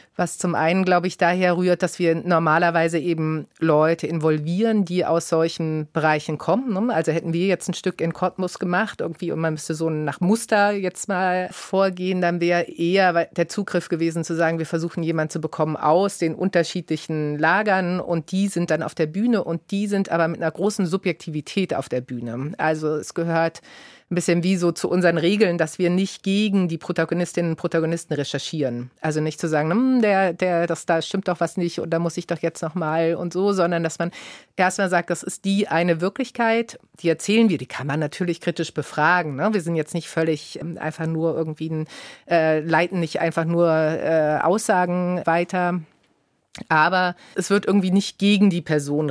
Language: German